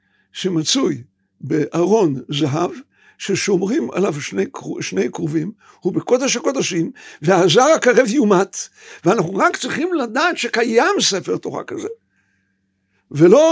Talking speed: 100 wpm